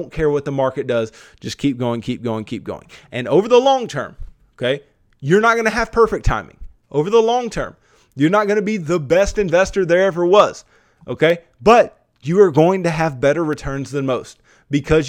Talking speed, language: 200 wpm, English